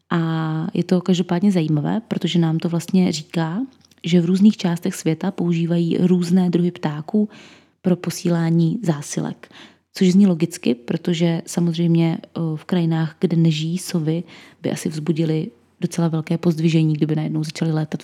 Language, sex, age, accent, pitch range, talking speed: Czech, female, 20-39, native, 165-185 Hz, 140 wpm